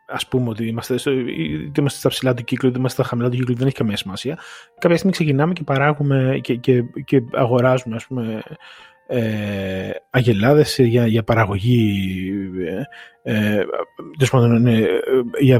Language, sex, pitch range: Greek, male, 115-150 Hz